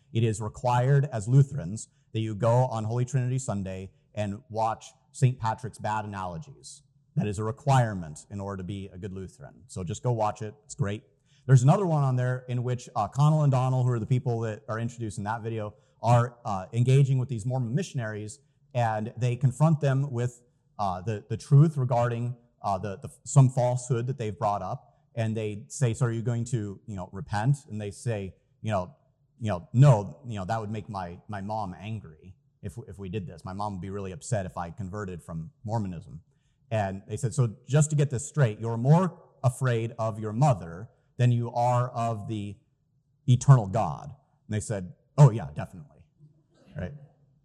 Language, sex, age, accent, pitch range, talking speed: English, male, 30-49, American, 105-140 Hz, 195 wpm